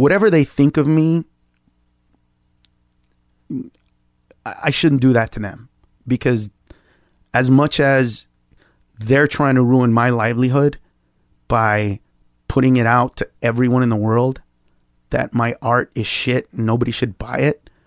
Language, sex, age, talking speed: English, male, 30-49, 130 wpm